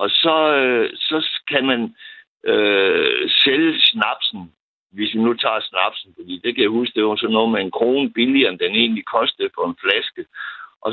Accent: native